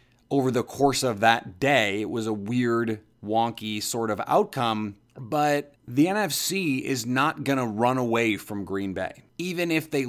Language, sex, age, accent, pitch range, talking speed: English, male, 30-49, American, 115-140 Hz, 170 wpm